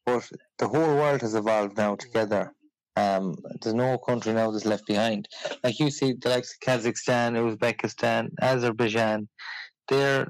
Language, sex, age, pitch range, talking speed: English, male, 20-39, 115-135 Hz, 145 wpm